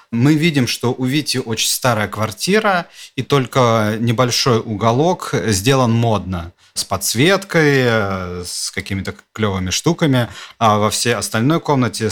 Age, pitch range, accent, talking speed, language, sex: 40-59, 105-125 Hz, native, 125 wpm, Russian, male